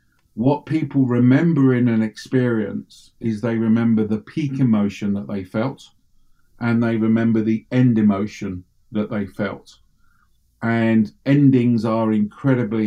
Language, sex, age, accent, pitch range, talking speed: English, male, 50-69, British, 105-125 Hz, 130 wpm